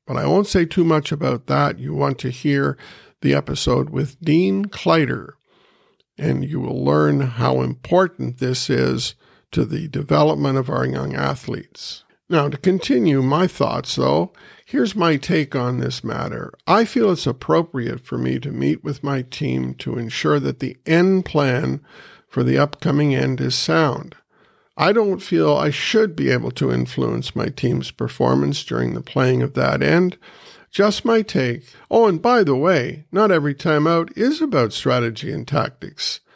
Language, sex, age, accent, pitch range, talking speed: English, male, 50-69, American, 125-175 Hz, 165 wpm